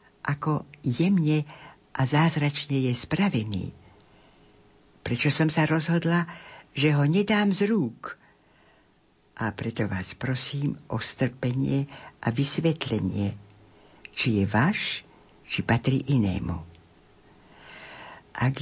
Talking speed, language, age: 95 wpm, Slovak, 60-79